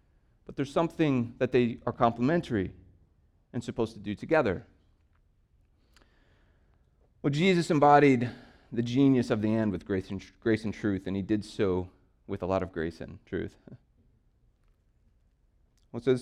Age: 30-49